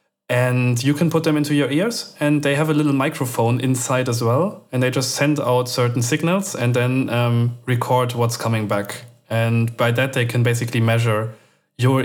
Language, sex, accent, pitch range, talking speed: English, male, German, 115-140 Hz, 195 wpm